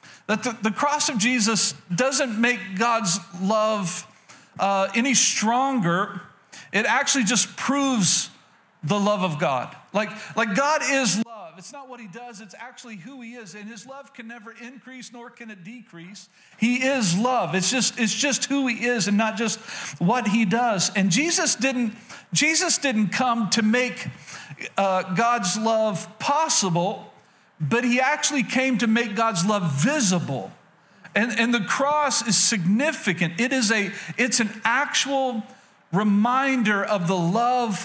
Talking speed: 155 wpm